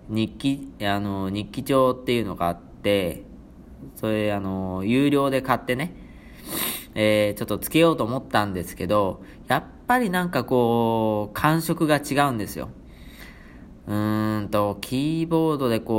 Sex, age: male, 20-39